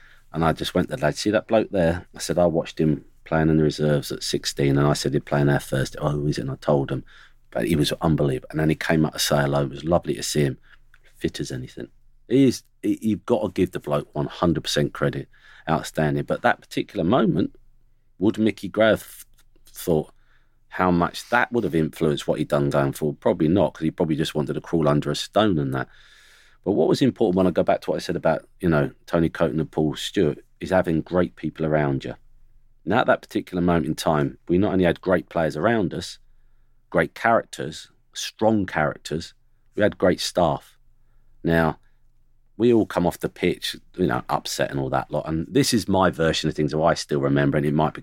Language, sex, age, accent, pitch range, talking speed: English, male, 40-59, British, 75-105 Hz, 225 wpm